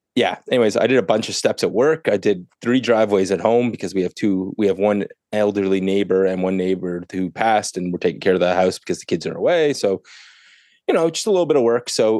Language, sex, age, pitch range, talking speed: English, male, 30-49, 100-125 Hz, 255 wpm